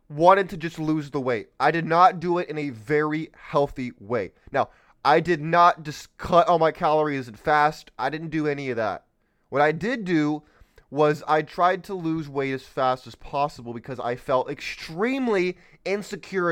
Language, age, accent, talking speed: English, 20-39, American, 190 wpm